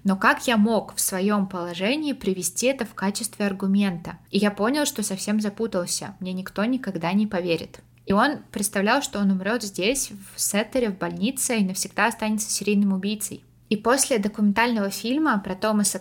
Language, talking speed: Russian, 170 wpm